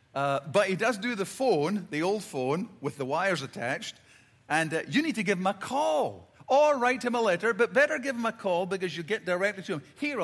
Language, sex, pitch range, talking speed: English, male, 170-250 Hz, 240 wpm